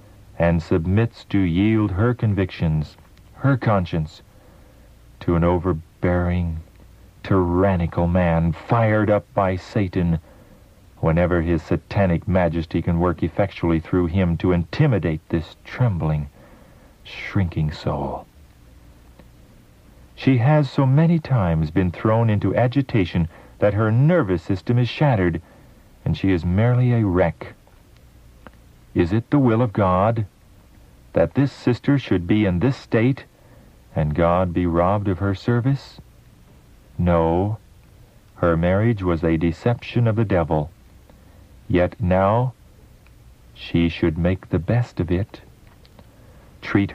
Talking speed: 120 wpm